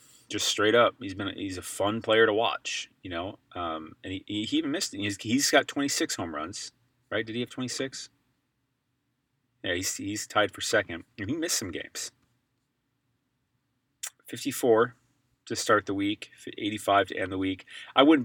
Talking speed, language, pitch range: 180 wpm, English, 110-135 Hz